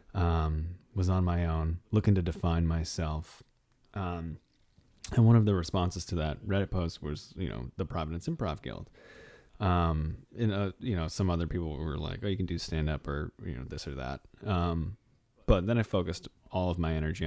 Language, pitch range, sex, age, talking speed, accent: English, 80-100 Hz, male, 30-49, 200 wpm, American